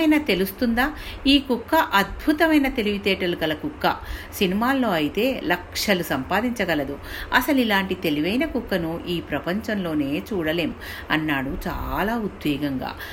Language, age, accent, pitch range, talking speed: Telugu, 50-69, native, 150-230 Hz, 95 wpm